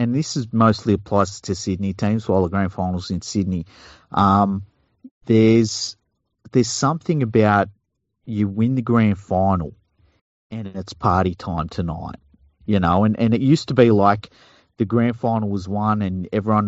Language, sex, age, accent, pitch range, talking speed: English, male, 40-59, Australian, 95-120 Hz, 160 wpm